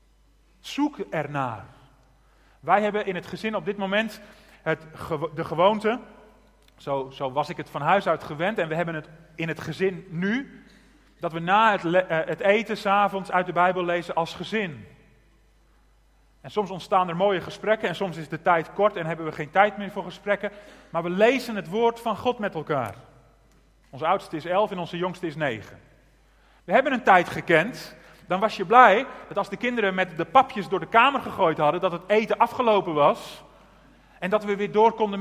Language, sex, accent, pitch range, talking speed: Dutch, male, Dutch, 165-215 Hz, 190 wpm